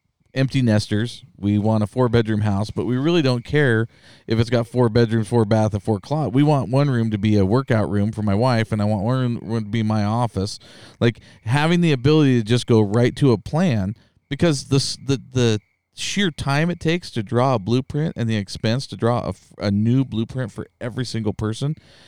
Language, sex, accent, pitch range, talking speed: English, male, American, 105-130 Hz, 210 wpm